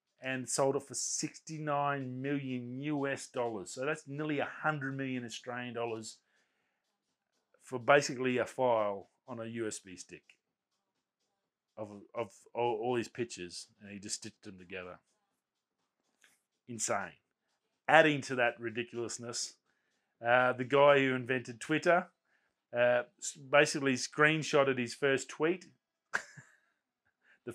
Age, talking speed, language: 30-49, 120 wpm, English